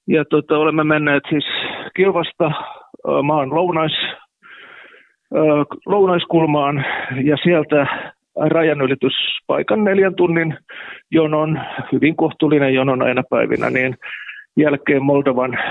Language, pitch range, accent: Finnish, 135-175 Hz, native